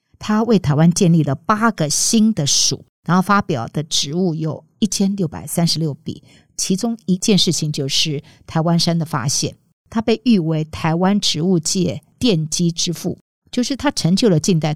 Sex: female